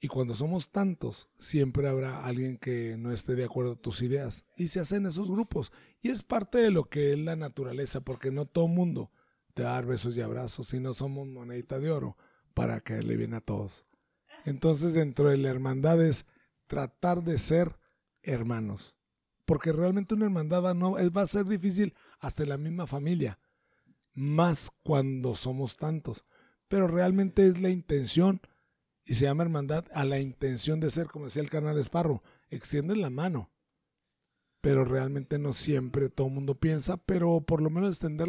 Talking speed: 185 wpm